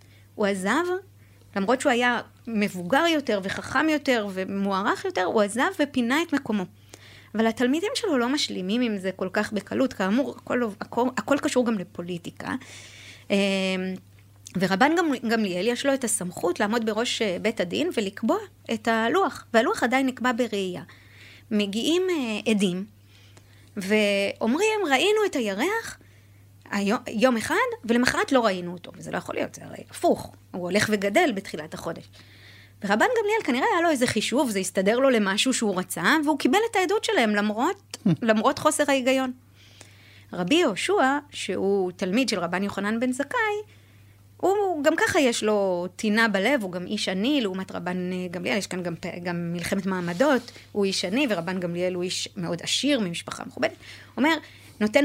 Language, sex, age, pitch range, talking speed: Hebrew, female, 30-49, 180-270 Hz, 150 wpm